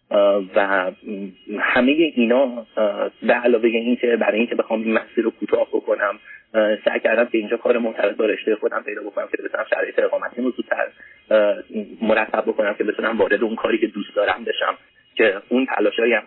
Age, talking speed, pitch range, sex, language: 30-49, 160 wpm, 110-150 Hz, male, Persian